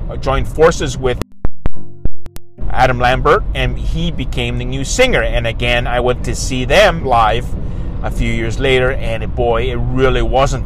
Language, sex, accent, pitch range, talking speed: English, male, American, 110-130 Hz, 160 wpm